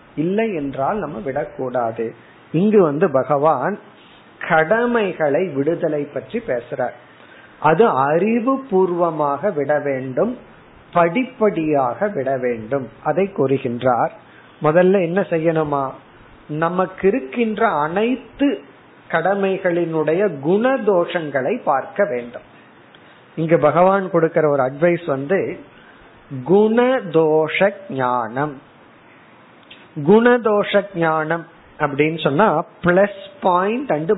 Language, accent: Tamil, native